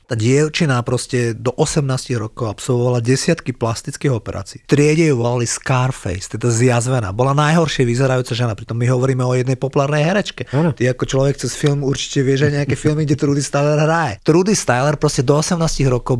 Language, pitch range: Slovak, 125-150 Hz